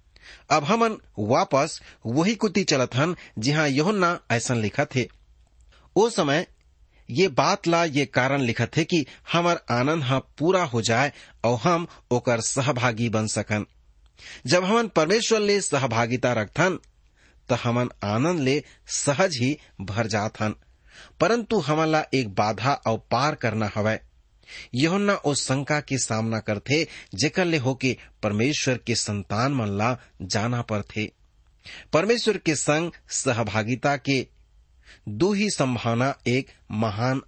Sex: male